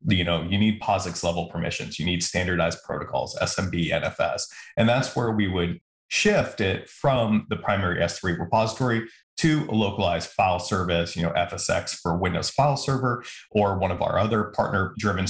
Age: 30-49